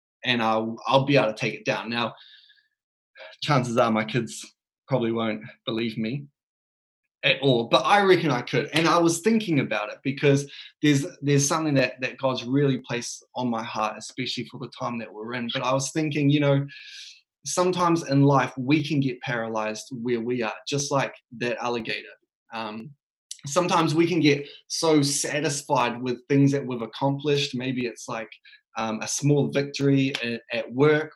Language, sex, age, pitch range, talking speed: English, male, 20-39, 120-145 Hz, 175 wpm